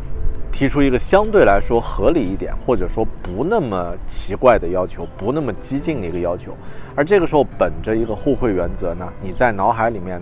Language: Chinese